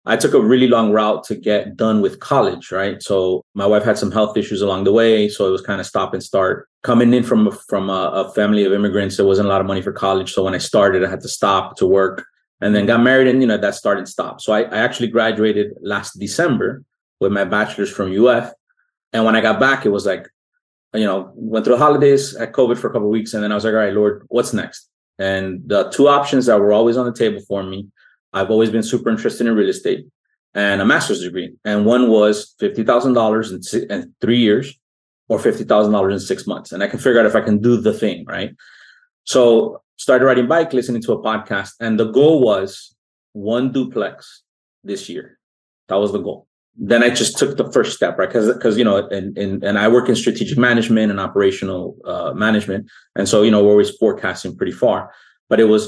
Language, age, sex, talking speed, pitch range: English, 30-49, male, 230 wpm, 100-120 Hz